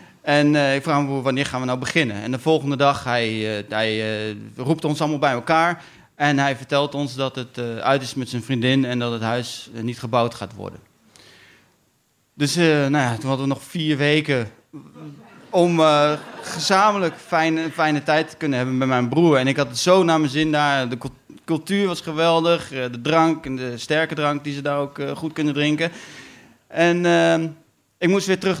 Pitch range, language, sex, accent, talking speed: 120-150 Hz, Dutch, male, Dutch, 215 wpm